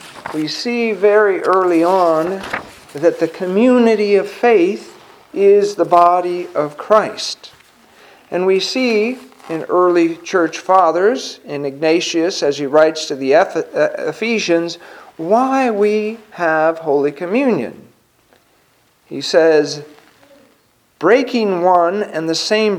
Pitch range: 155-210 Hz